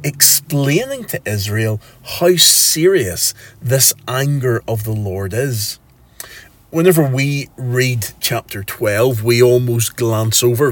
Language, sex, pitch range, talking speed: English, male, 105-135 Hz, 110 wpm